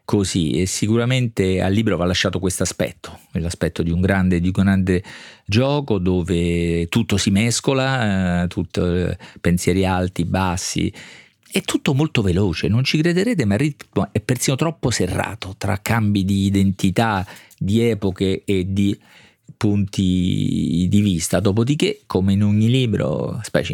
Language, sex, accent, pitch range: Italian, male, native, 90-110 Hz